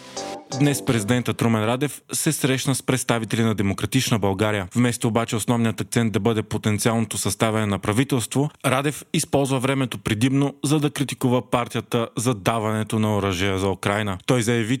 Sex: male